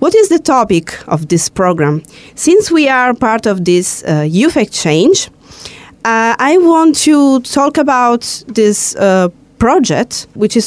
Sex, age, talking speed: female, 20-39, 150 wpm